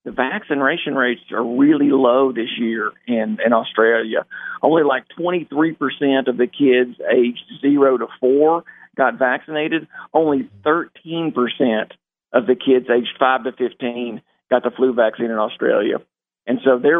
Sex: male